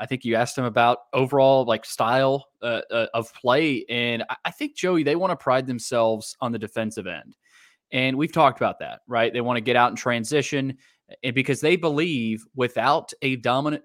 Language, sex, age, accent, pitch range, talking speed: English, male, 20-39, American, 115-135 Hz, 205 wpm